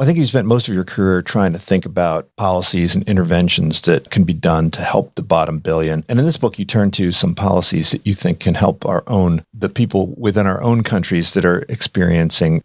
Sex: male